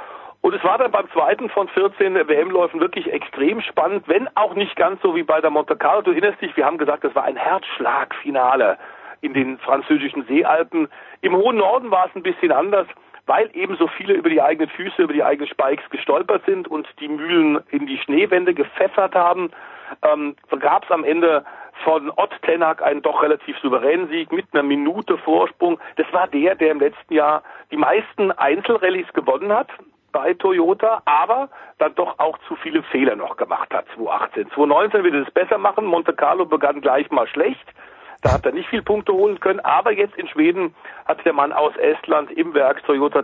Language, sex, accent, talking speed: German, male, German, 195 wpm